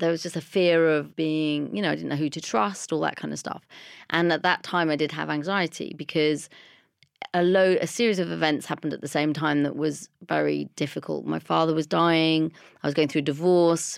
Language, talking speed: English, 230 wpm